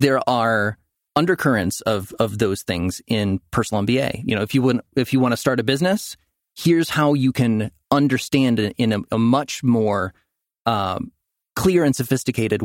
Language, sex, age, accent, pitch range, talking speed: English, male, 30-49, American, 110-130 Hz, 170 wpm